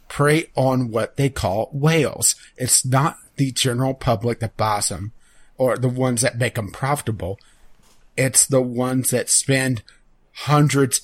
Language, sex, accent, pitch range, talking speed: English, male, American, 115-135 Hz, 145 wpm